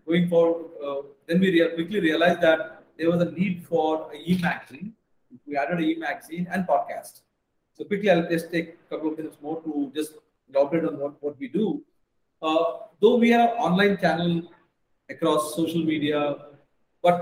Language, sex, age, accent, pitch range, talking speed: English, male, 40-59, Indian, 160-185 Hz, 180 wpm